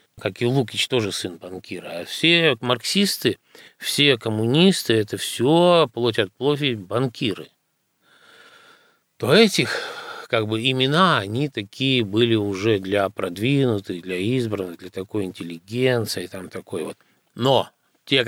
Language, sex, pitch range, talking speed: Russian, male, 95-130 Hz, 120 wpm